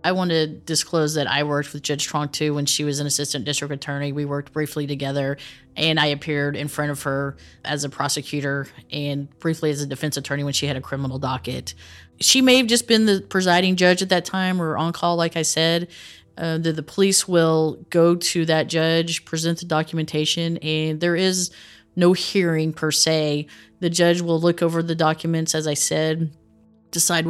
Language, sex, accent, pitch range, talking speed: English, female, American, 145-170 Hz, 200 wpm